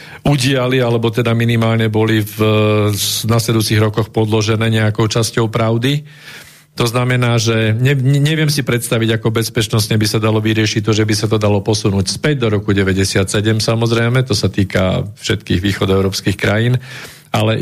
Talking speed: 150 wpm